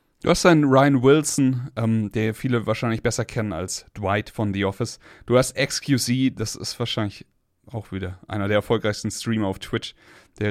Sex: male